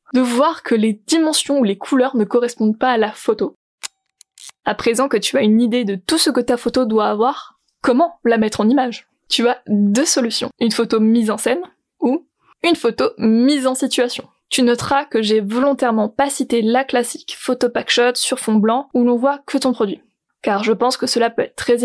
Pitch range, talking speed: 225-270 Hz, 210 wpm